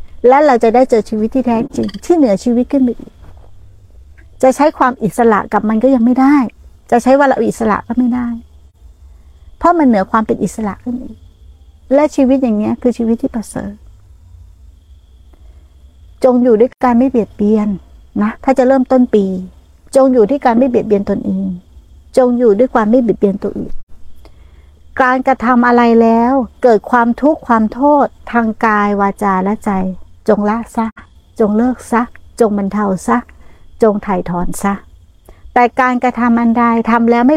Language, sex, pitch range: Thai, female, 190-245 Hz